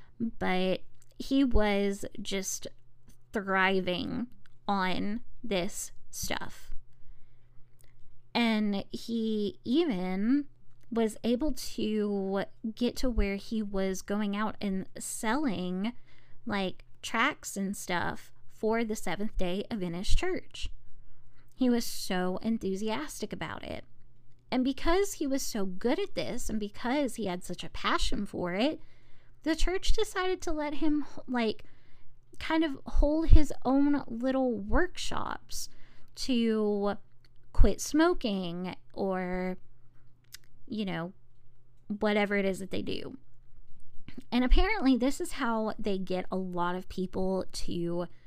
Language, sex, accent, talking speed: English, female, American, 120 wpm